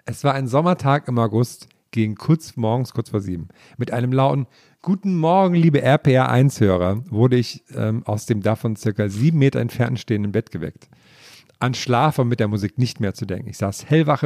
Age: 50-69